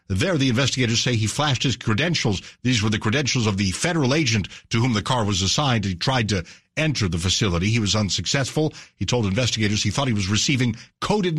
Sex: male